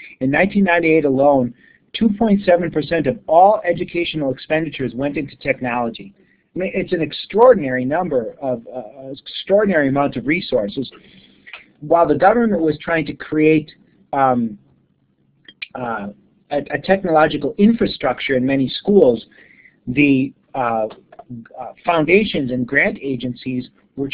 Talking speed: 110 wpm